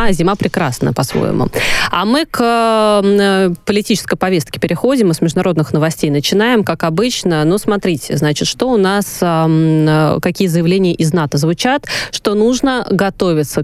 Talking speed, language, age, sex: 130 wpm, Russian, 20-39, female